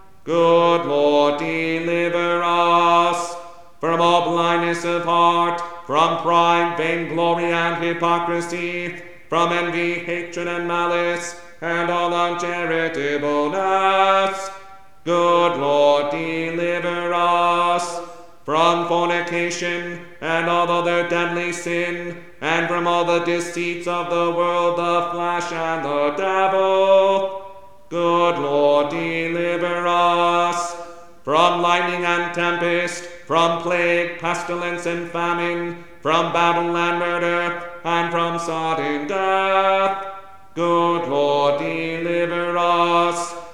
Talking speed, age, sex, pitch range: 100 wpm, 40-59, male, 170-175 Hz